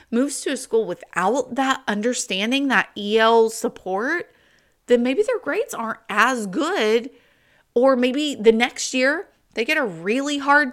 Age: 30-49